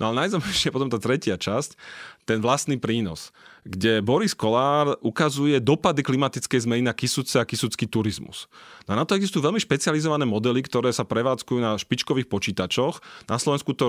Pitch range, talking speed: 110-135 Hz, 170 wpm